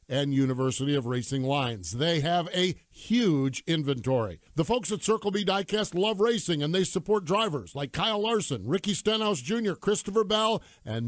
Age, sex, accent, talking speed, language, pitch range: 50-69, male, American, 170 wpm, English, 140-205 Hz